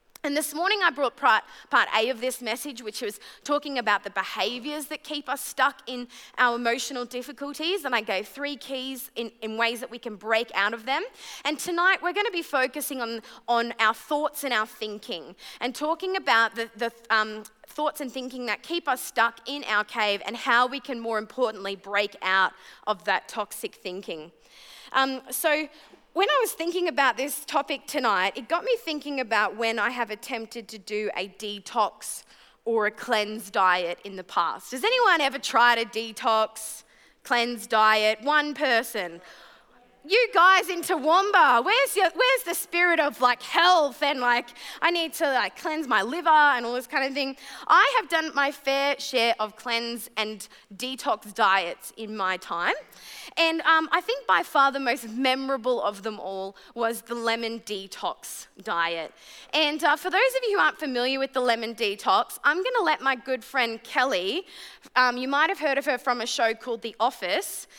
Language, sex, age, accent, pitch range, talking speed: English, female, 20-39, Australian, 220-300 Hz, 185 wpm